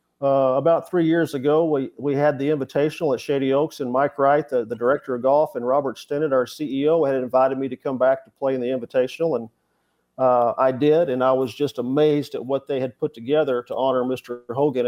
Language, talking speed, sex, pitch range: English, 225 wpm, male, 125-150 Hz